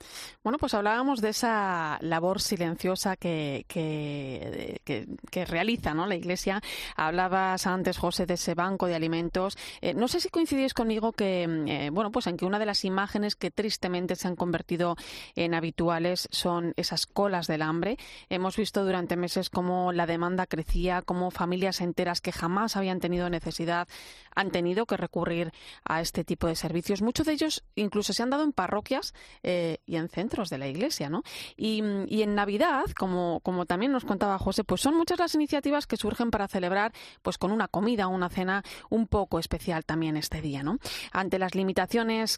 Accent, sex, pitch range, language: Spanish, female, 175-215 Hz, Spanish